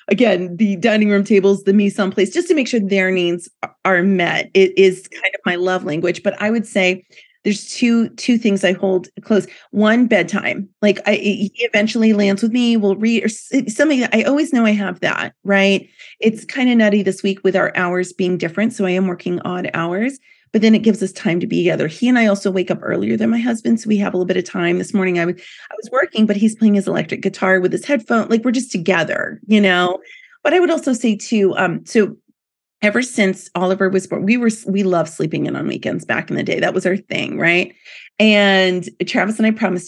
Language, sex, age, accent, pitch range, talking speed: English, female, 30-49, American, 185-220 Hz, 235 wpm